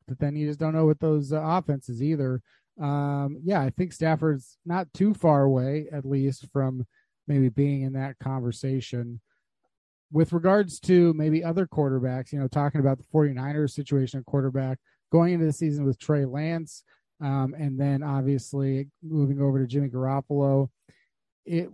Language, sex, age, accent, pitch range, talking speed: English, male, 30-49, American, 140-175 Hz, 165 wpm